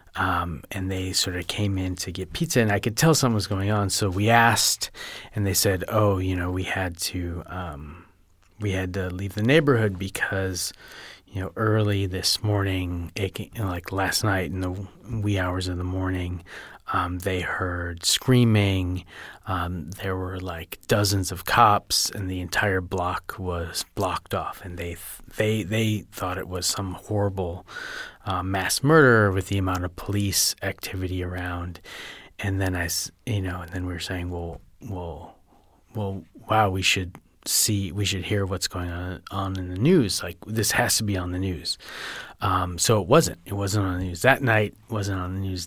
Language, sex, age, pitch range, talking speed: English, male, 30-49, 90-105 Hz, 190 wpm